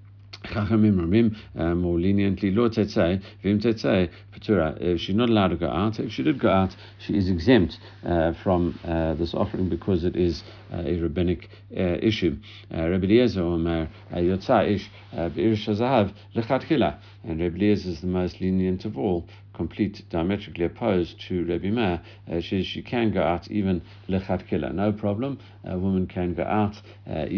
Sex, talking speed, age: male, 140 wpm, 60-79